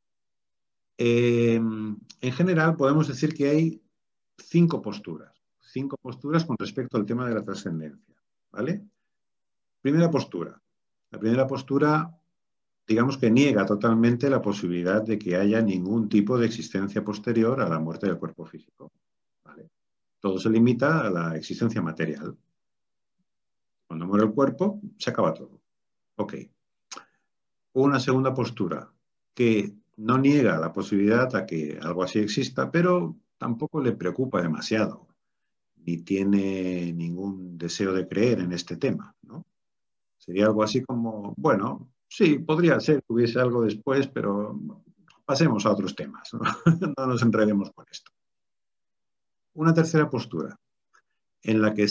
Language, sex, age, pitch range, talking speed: Spanish, male, 50-69, 100-135 Hz, 130 wpm